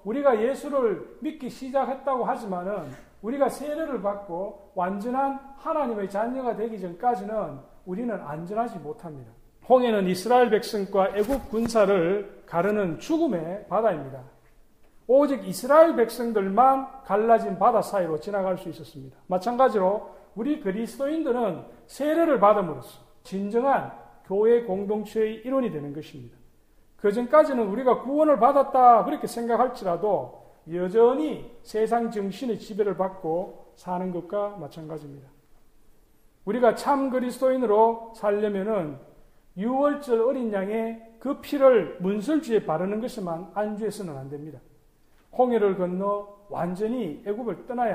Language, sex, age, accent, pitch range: Korean, male, 40-59, native, 180-245 Hz